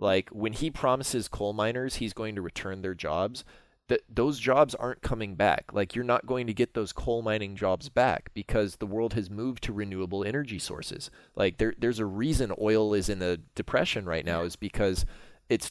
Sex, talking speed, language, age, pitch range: male, 200 wpm, English, 20-39, 100-125 Hz